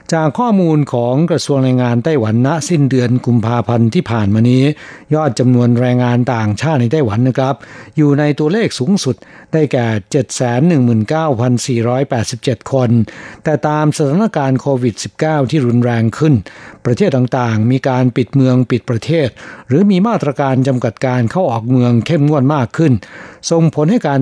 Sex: male